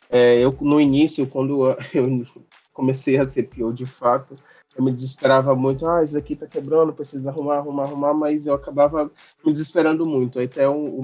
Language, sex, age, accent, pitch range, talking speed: Portuguese, male, 20-39, Brazilian, 130-145 Hz, 190 wpm